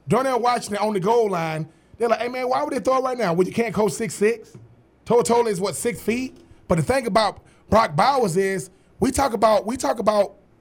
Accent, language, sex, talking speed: American, English, male, 240 wpm